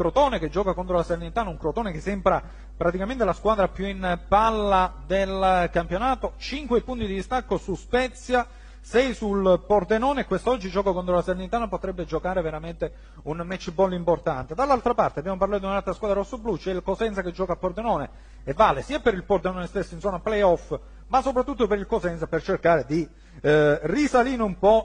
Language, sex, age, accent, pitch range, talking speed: Italian, male, 40-59, native, 170-220 Hz, 185 wpm